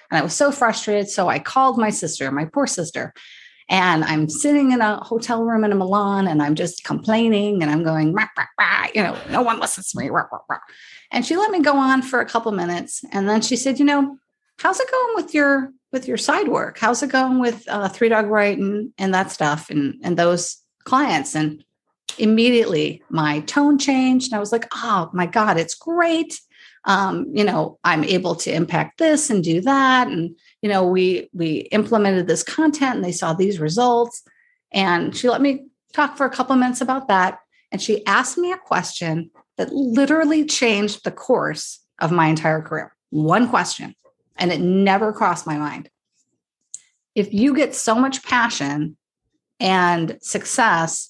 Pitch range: 180-265 Hz